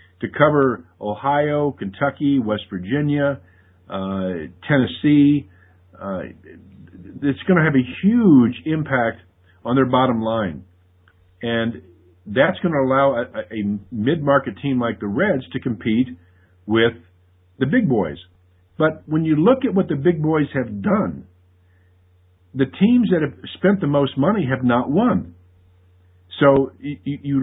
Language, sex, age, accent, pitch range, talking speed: English, male, 50-69, American, 90-150 Hz, 140 wpm